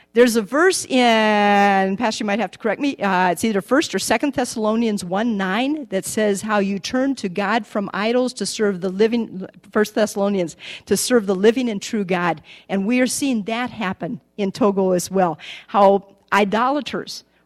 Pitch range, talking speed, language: 195-245 Hz, 185 wpm, English